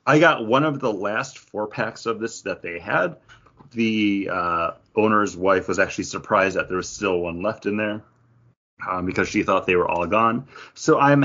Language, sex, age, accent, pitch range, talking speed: English, male, 30-49, American, 95-130 Hz, 205 wpm